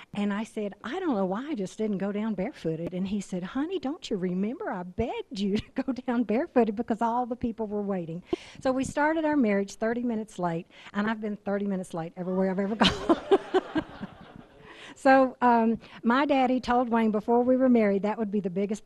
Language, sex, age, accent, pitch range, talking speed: English, female, 60-79, American, 180-230 Hz, 210 wpm